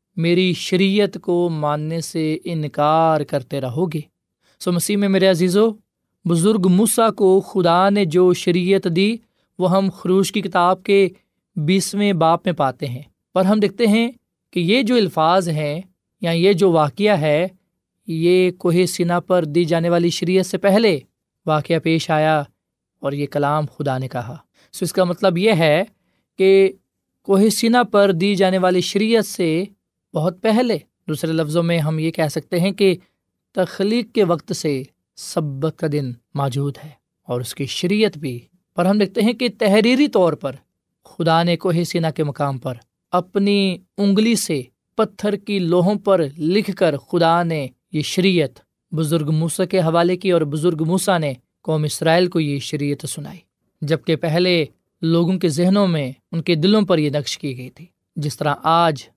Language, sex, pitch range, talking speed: Urdu, male, 155-195 Hz, 170 wpm